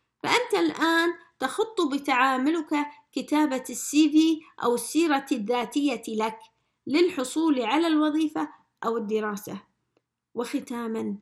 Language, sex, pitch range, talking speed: English, female, 230-305 Hz, 90 wpm